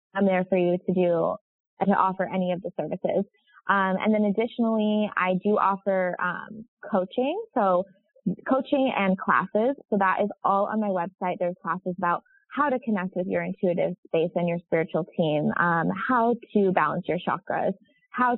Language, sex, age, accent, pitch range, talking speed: English, female, 20-39, American, 180-210 Hz, 175 wpm